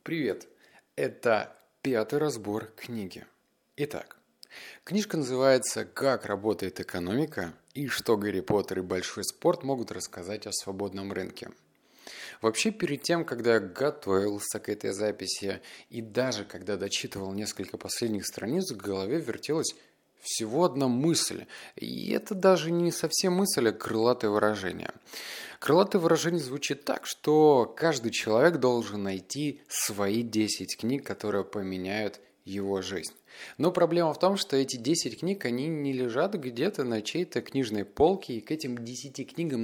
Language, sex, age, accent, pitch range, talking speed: Russian, male, 30-49, native, 105-150 Hz, 135 wpm